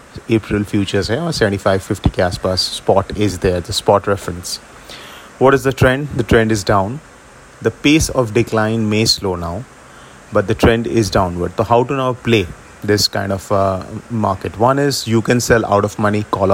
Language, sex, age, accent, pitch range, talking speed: English, male, 30-49, Indian, 100-120 Hz, 180 wpm